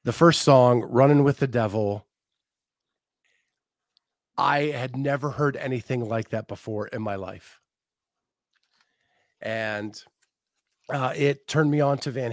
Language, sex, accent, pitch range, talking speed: English, male, American, 110-140 Hz, 125 wpm